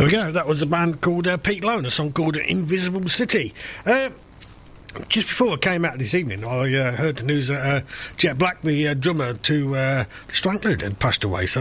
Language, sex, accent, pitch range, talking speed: English, male, British, 120-175 Hz, 220 wpm